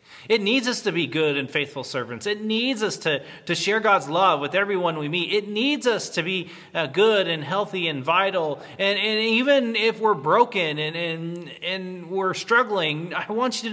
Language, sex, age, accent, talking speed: English, male, 30-49, American, 200 wpm